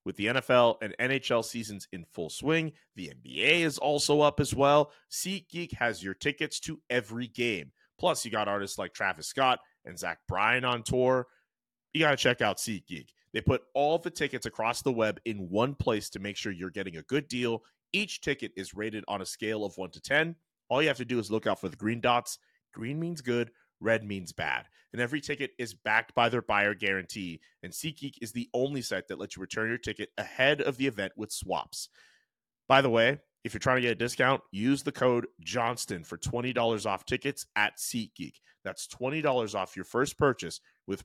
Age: 30-49